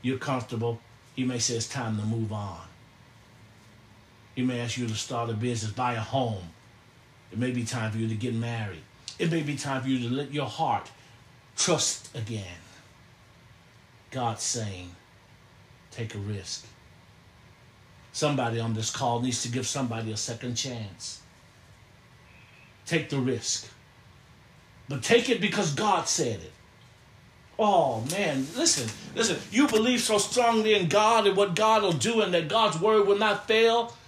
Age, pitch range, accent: 50-69, 110-150 Hz, American